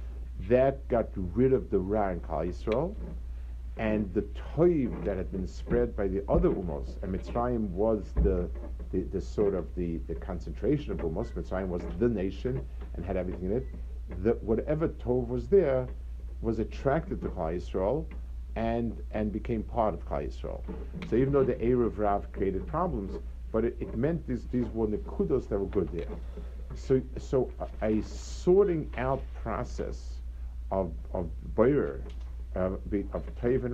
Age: 50-69